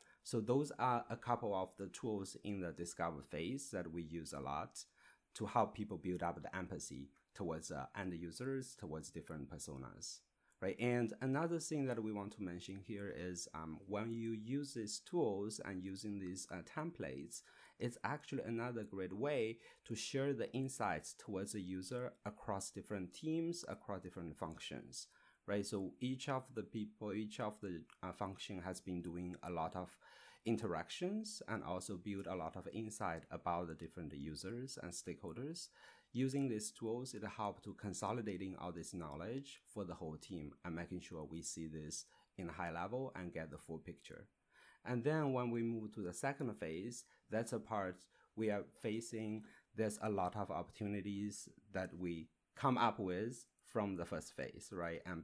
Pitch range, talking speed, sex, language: 85-115 Hz, 175 wpm, male, English